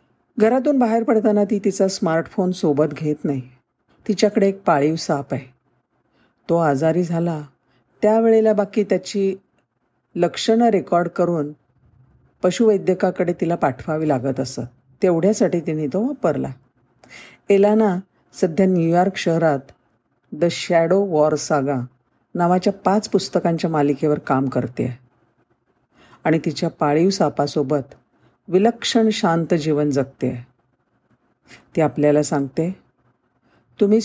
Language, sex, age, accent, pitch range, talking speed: Marathi, female, 50-69, native, 140-200 Hz, 100 wpm